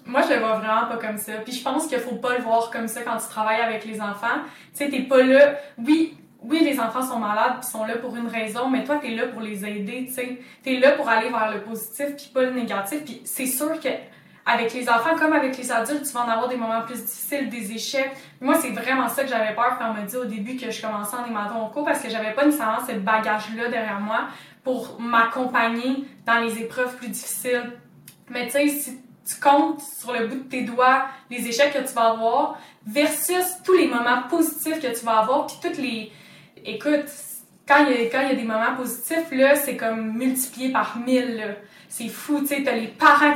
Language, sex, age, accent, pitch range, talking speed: French, female, 10-29, Canadian, 230-285 Hz, 240 wpm